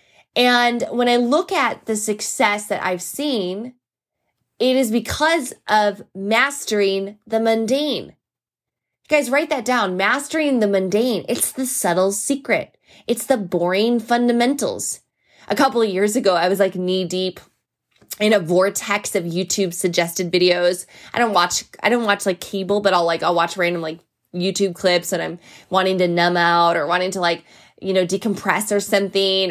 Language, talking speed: English, 165 wpm